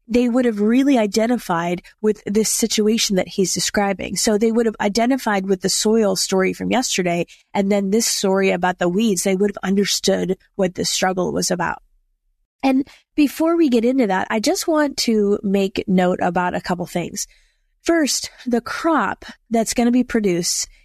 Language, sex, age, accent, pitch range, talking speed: English, female, 30-49, American, 195-240 Hz, 180 wpm